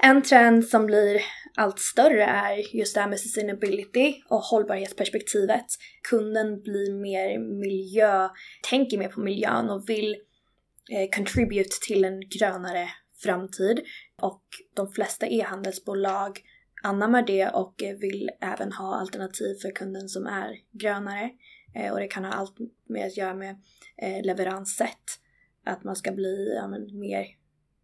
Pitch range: 195-220 Hz